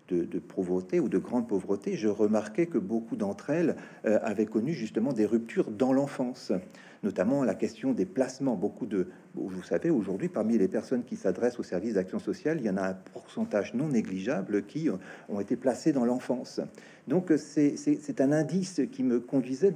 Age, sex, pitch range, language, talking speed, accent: 50-69, male, 105-140 Hz, French, 190 wpm, French